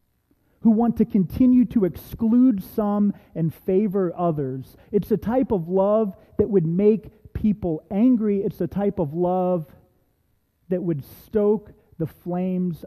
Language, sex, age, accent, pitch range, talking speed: English, male, 30-49, American, 140-190 Hz, 140 wpm